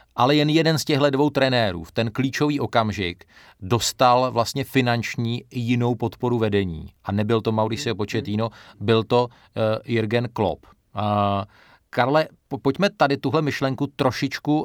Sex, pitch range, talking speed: male, 105-125 Hz, 140 wpm